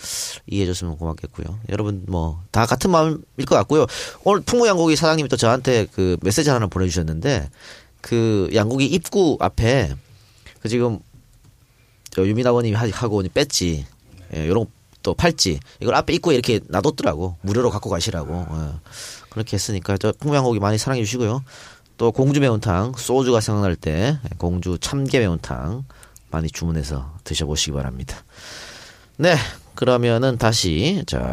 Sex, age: male, 30-49